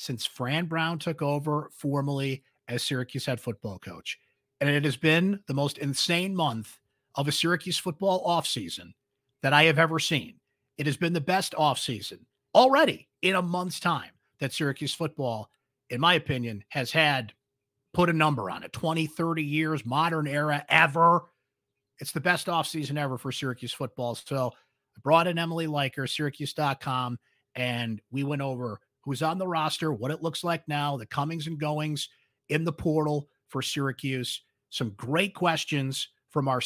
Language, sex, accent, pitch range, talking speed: English, male, American, 130-165 Hz, 170 wpm